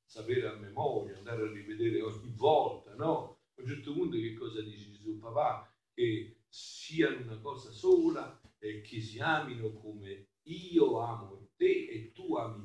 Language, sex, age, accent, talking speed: Italian, male, 50-69, native, 165 wpm